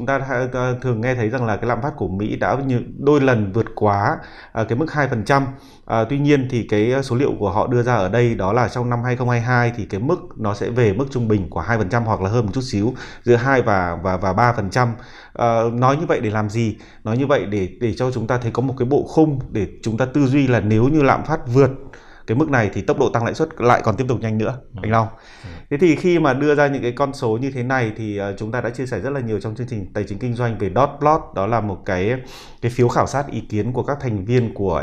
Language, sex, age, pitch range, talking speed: Vietnamese, male, 20-39, 105-130 Hz, 270 wpm